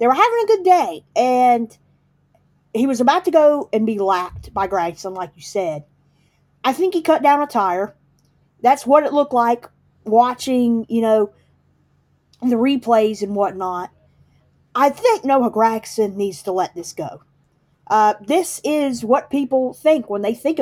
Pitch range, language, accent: 190-265 Hz, English, American